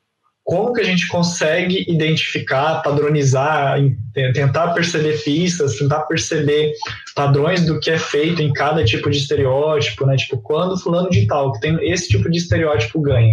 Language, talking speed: Portuguese, 160 wpm